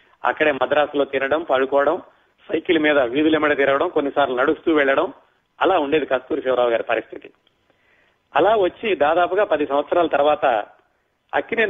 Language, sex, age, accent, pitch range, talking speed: Telugu, male, 40-59, native, 140-180 Hz, 130 wpm